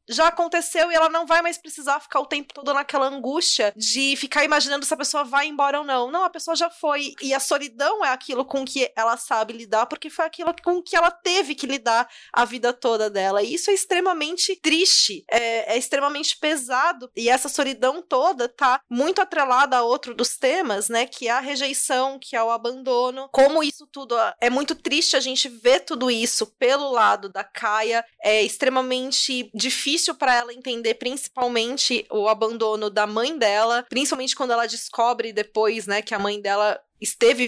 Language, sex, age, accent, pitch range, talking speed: Portuguese, female, 20-39, Brazilian, 235-290 Hz, 190 wpm